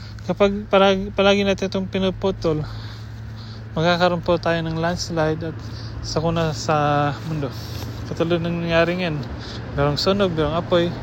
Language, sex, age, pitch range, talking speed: English, male, 20-39, 125-185 Hz, 125 wpm